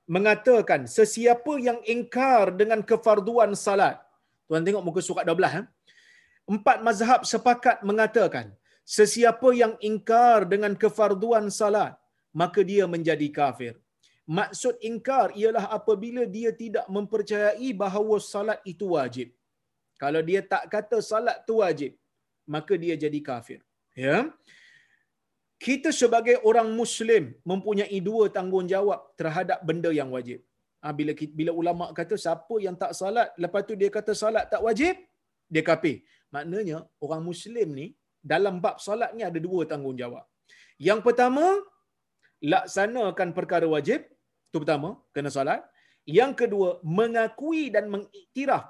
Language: Malayalam